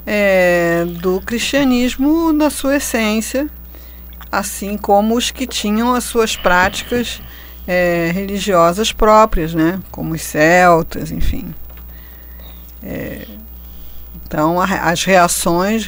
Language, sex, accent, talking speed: Portuguese, female, Brazilian, 85 wpm